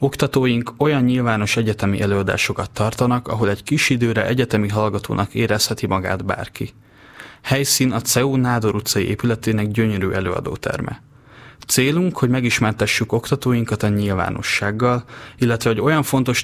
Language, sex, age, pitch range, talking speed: Hungarian, male, 30-49, 105-125 Hz, 120 wpm